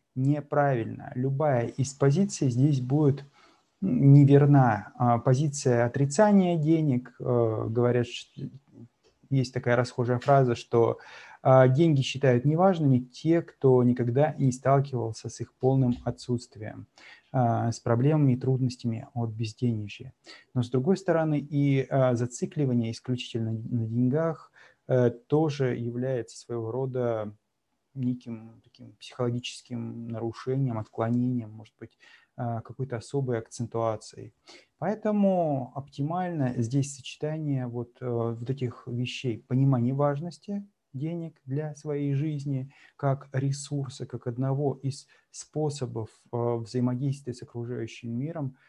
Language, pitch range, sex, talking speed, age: Russian, 120-140 Hz, male, 100 wpm, 20-39